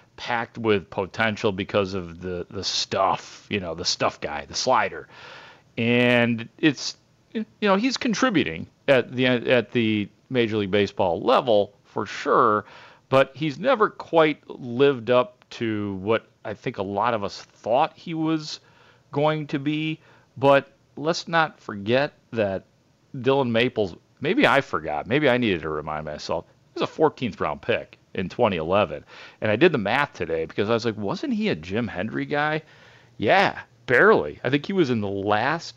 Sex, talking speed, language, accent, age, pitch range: male, 165 wpm, English, American, 40-59, 105-140 Hz